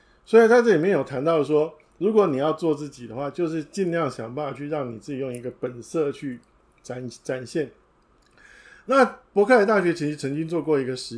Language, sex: Chinese, male